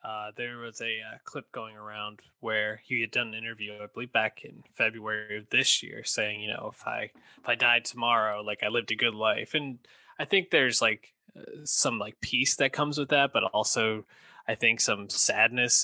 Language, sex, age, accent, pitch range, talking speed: English, male, 20-39, American, 110-130 Hz, 210 wpm